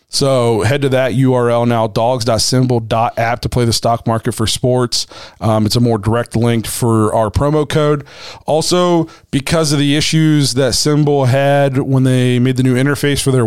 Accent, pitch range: American, 115-140 Hz